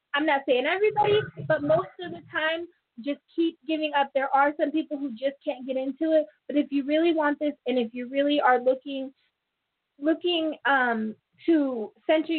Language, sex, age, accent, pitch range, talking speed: English, female, 20-39, American, 255-310 Hz, 190 wpm